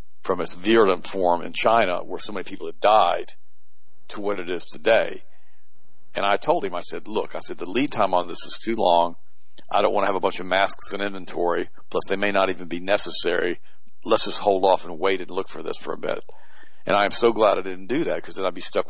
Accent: American